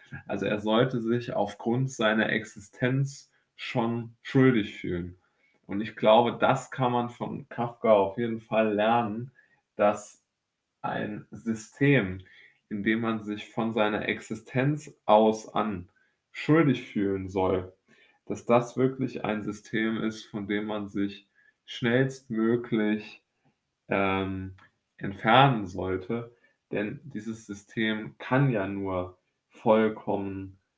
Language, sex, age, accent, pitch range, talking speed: German, male, 20-39, German, 95-115 Hz, 115 wpm